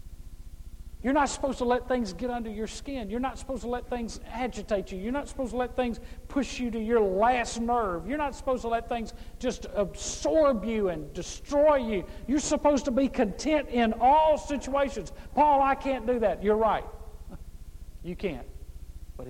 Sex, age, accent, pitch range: male, 50-69, American, 165-245 Hz